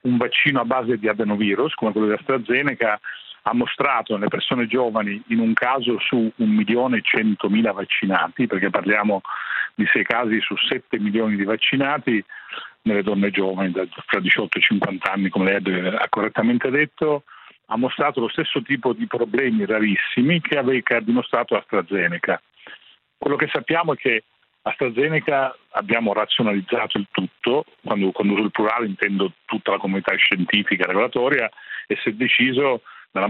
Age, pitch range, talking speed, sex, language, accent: 40-59, 105-130 Hz, 150 wpm, male, Italian, native